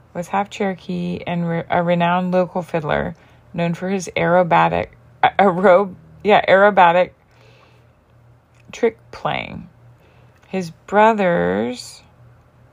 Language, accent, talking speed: English, American, 80 wpm